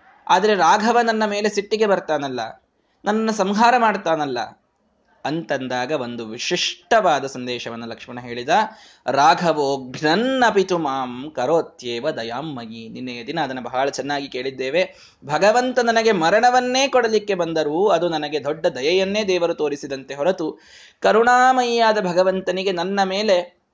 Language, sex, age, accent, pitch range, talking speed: Kannada, male, 20-39, native, 140-225 Hz, 105 wpm